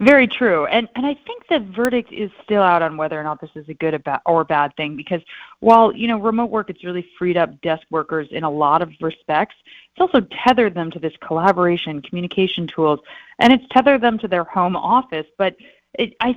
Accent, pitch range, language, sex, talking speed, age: American, 160-220 Hz, English, female, 215 wpm, 30-49